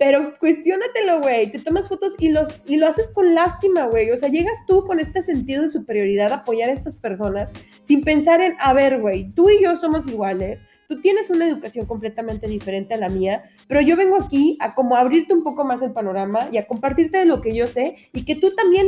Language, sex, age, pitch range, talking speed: Spanish, female, 20-39, 225-320 Hz, 230 wpm